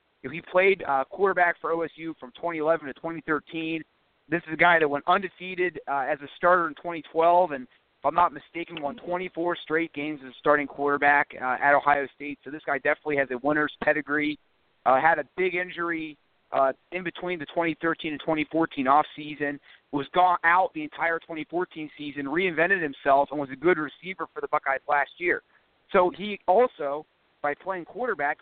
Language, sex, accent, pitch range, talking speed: English, male, American, 150-180 Hz, 190 wpm